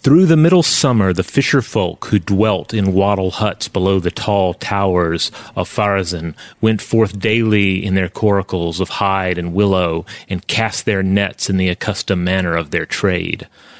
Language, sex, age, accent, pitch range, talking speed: English, male, 30-49, American, 95-110 Hz, 165 wpm